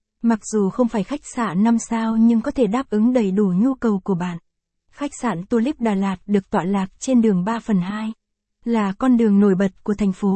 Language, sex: Vietnamese, female